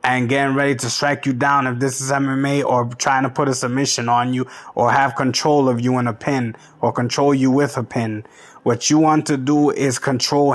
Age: 20-39